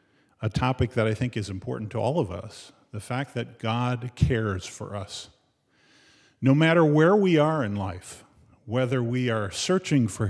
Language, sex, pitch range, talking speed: English, male, 100-125 Hz, 175 wpm